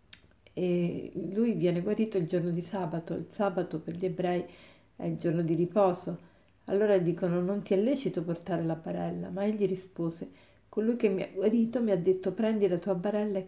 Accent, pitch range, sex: native, 175-215 Hz, female